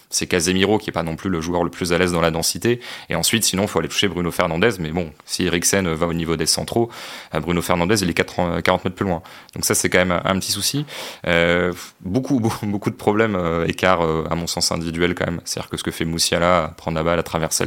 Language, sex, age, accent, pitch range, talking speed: French, male, 30-49, French, 85-95 Hz, 260 wpm